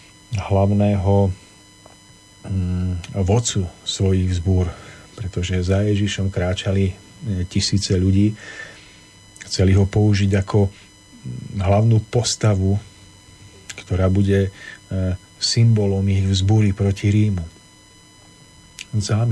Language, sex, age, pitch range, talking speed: Slovak, male, 40-59, 95-105 Hz, 75 wpm